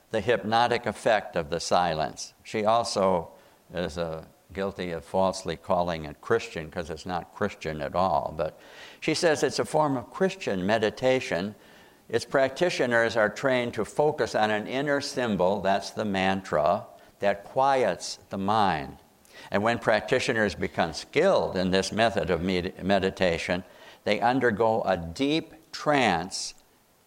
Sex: male